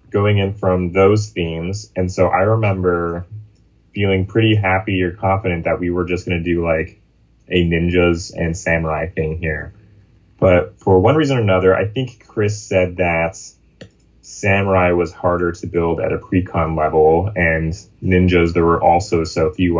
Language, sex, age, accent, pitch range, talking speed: English, male, 10-29, American, 85-100 Hz, 165 wpm